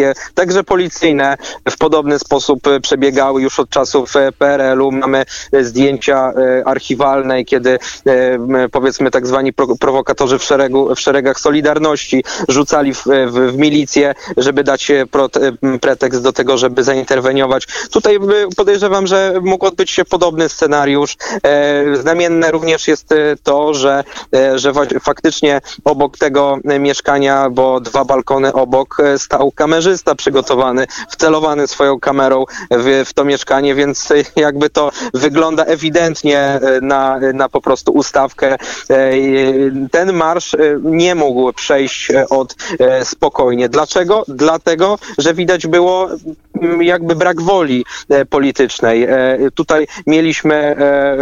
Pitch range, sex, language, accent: 135-155 Hz, male, Polish, native